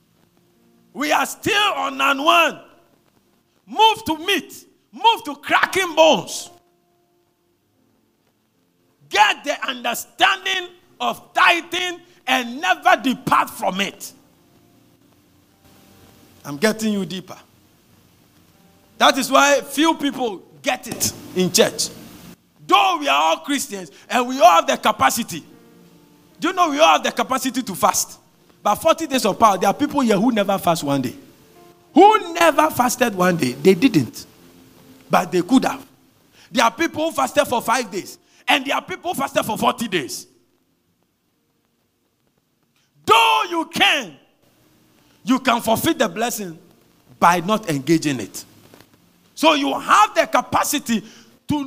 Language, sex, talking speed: English, male, 135 wpm